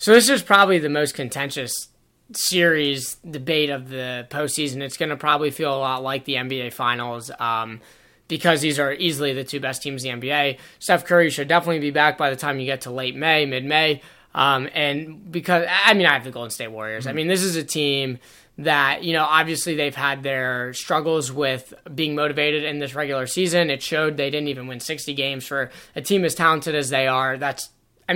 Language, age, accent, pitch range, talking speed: English, 20-39, American, 135-170 Hz, 215 wpm